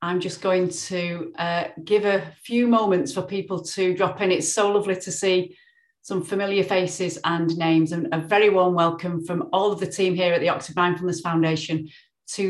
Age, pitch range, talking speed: 30-49, 160-190 Hz, 195 wpm